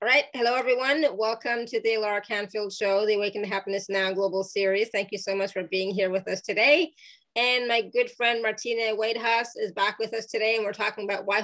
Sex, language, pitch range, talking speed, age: female, English, 195-245 Hz, 225 wpm, 20-39